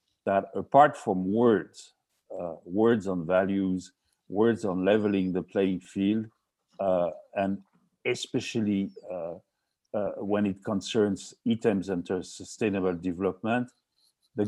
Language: English